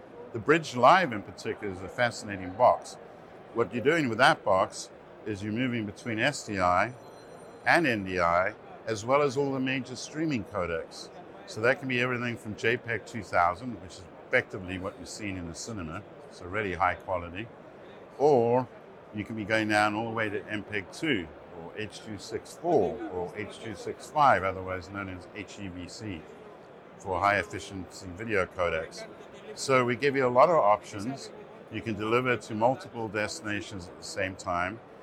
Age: 60-79